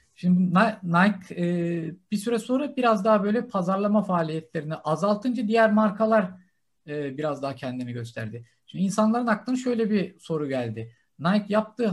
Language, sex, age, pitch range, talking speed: Turkish, male, 50-69, 160-210 Hz, 130 wpm